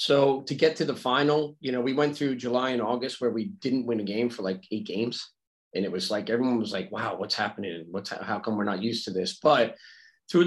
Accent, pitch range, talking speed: American, 105-135 Hz, 260 wpm